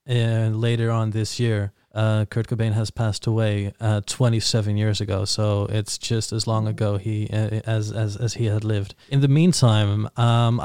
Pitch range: 110-135 Hz